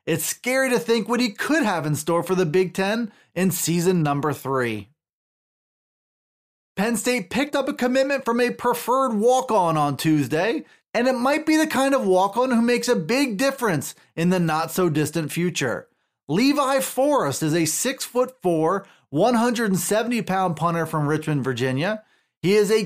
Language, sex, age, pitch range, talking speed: English, male, 30-49, 160-230 Hz, 160 wpm